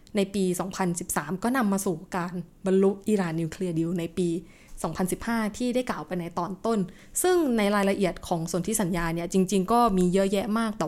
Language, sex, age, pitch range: Thai, female, 20-39, 180-225 Hz